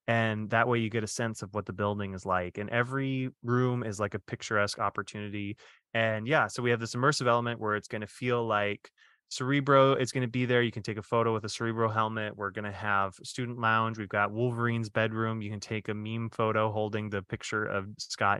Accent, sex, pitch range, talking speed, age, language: American, male, 105-125 Hz, 230 wpm, 20-39, English